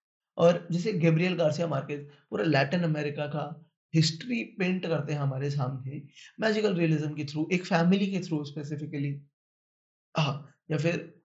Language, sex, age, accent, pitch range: Hindi, male, 20-39, native, 150-180 Hz